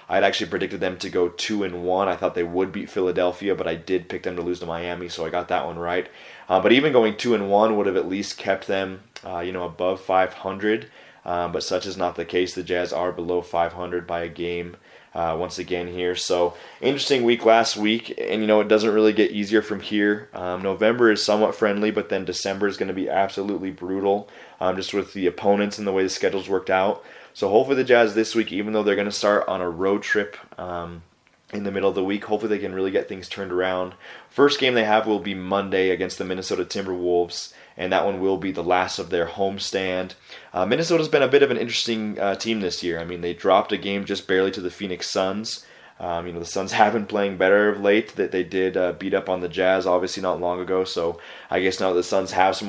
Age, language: 20-39, English